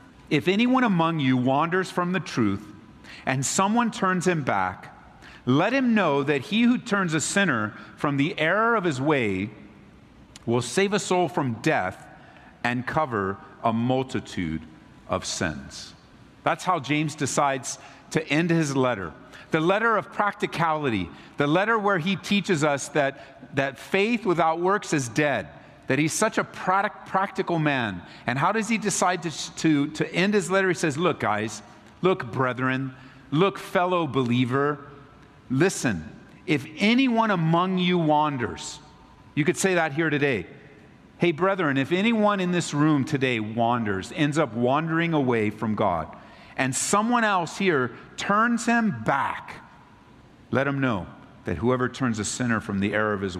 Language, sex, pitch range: English, male, 125-185 Hz